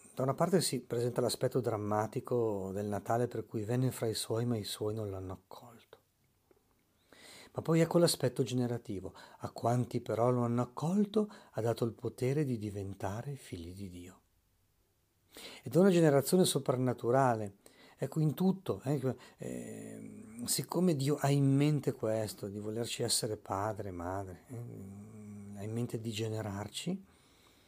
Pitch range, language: 100-140 Hz, Italian